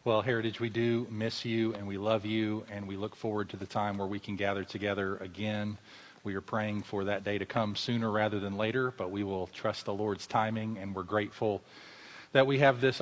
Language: English